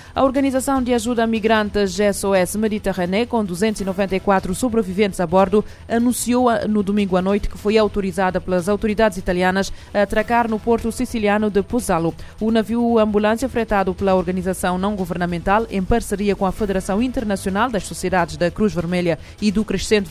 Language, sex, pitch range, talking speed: Portuguese, female, 190-225 Hz, 155 wpm